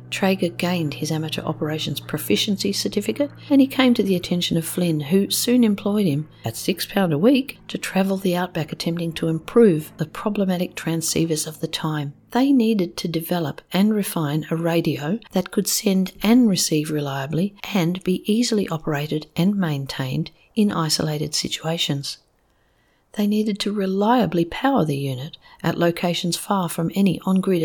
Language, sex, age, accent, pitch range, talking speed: English, female, 50-69, Australian, 150-195 Hz, 160 wpm